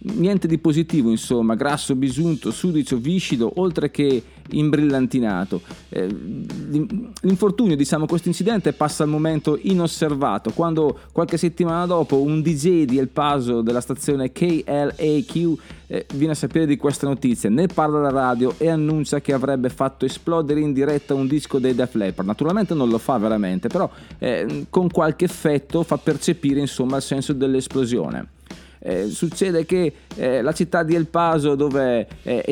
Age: 30-49